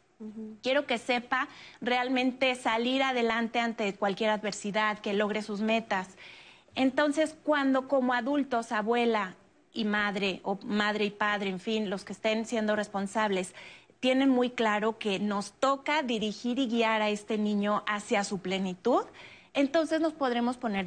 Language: Spanish